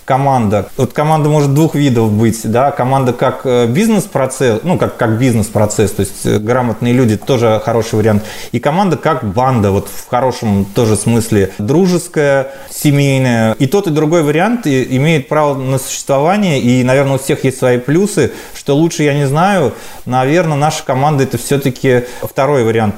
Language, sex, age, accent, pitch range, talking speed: Russian, male, 30-49, native, 120-150 Hz, 160 wpm